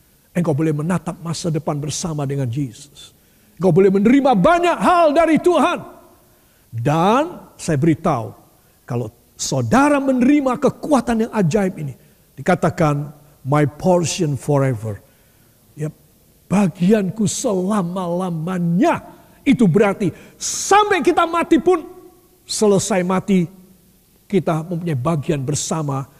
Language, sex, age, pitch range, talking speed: Indonesian, male, 50-69, 145-240 Hz, 105 wpm